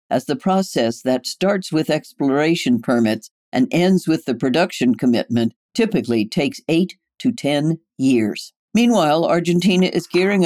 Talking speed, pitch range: 140 wpm, 130-175 Hz